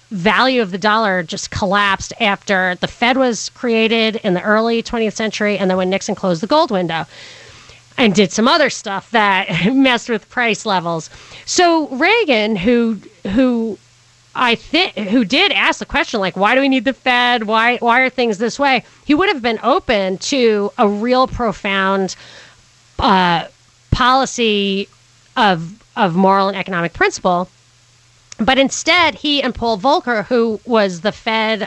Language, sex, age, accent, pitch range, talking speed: English, female, 30-49, American, 195-265 Hz, 160 wpm